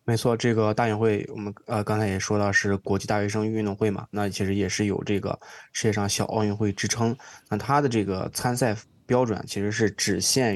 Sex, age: male, 20-39